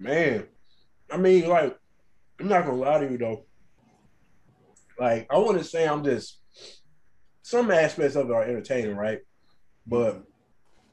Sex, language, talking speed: male, English, 150 wpm